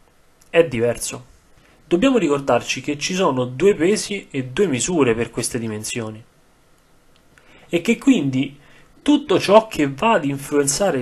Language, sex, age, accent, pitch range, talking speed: Italian, male, 30-49, native, 125-170 Hz, 130 wpm